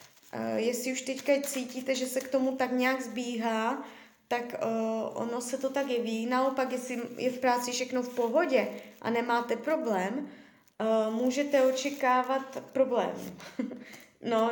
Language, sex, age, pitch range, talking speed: Czech, female, 20-39, 220-255 Hz, 150 wpm